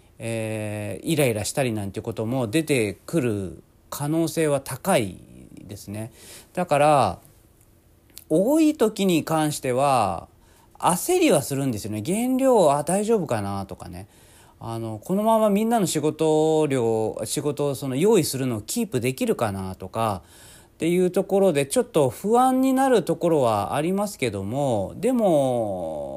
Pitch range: 110-175 Hz